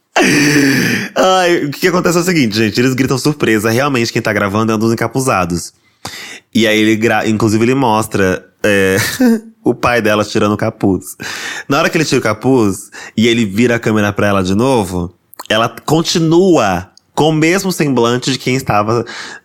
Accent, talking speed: Brazilian, 175 wpm